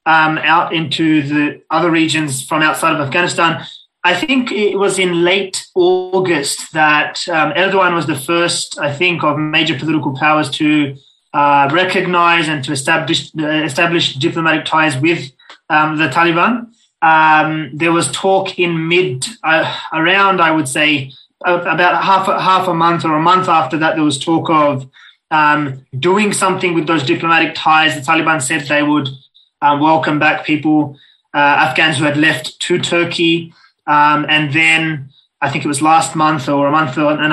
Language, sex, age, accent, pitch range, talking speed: English, male, 20-39, Australian, 150-170 Hz, 165 wpm